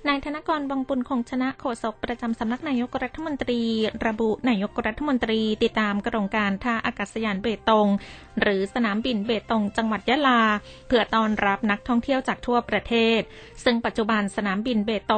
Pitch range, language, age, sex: 210-245 Hz, Thai, 20-39, female